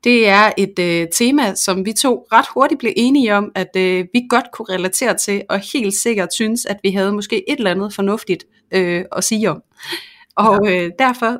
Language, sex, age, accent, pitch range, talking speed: Danish, female, 30-49, native, 180-230 Hz, 205 wpm